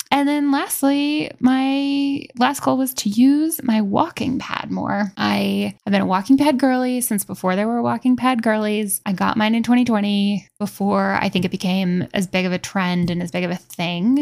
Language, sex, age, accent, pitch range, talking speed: English, female, 10-29, American, 185-230 Hz, 205 wpm